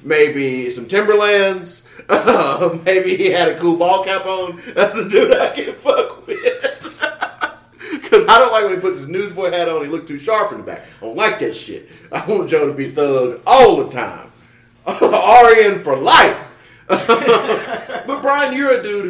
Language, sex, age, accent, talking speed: English, male, 30-49, American, 190 wpm